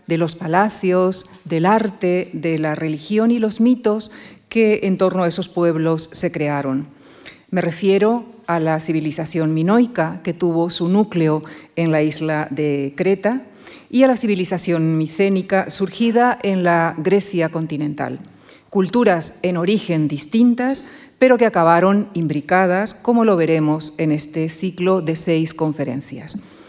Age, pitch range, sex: 40-59, 165-210 Hz, female